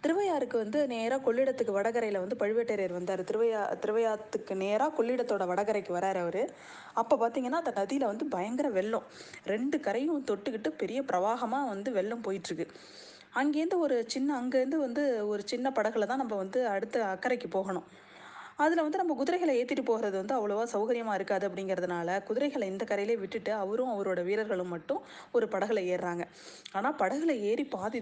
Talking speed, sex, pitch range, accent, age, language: 150 wpm, female, 195-255 Hz, native, 20-39, Tamil